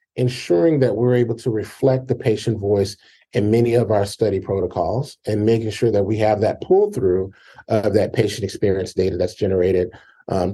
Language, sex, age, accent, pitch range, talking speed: English, male, 30-49, American, 100-120 Hz, 180 wpm